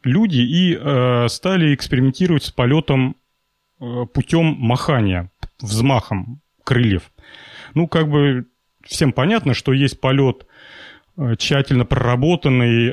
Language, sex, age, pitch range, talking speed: Russian, male, 30-49, 120-150 Hz, 105 wpm